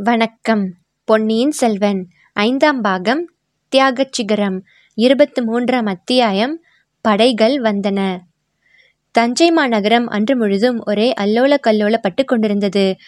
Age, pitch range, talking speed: 20-39, 205-245 Hz, 85 wpm